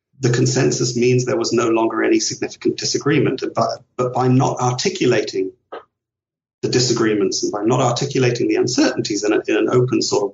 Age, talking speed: 40-59, 175 wpm